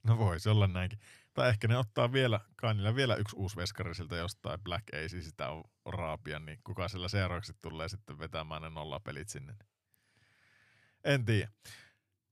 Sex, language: male, Finnish